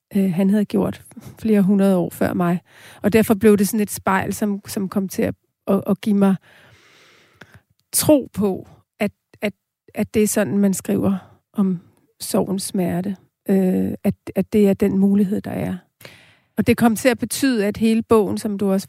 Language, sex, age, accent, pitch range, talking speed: Danish, female, 40-59, native, 190-215 Hz, 180 wpm